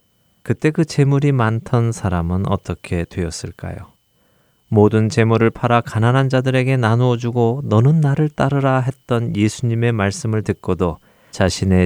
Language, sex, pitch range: Korean, male, 90-125 Hz